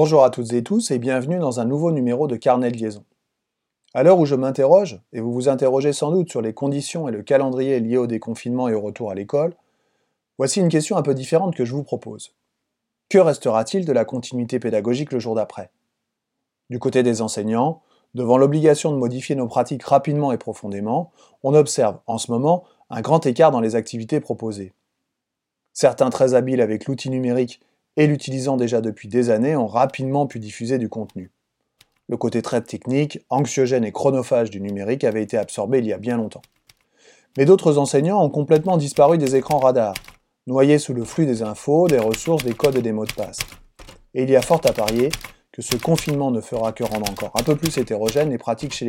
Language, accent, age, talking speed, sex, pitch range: French, French, 30-49, 205 wpm, male, 115-145 Hz